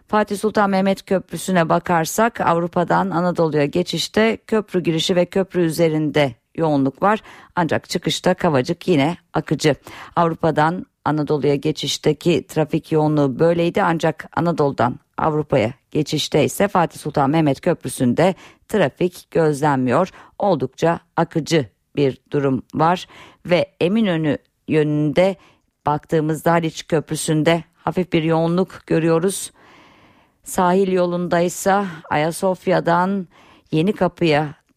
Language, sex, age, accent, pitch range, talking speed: Turkish, female, 50-69, native, 150-180 Hz, 100 wpm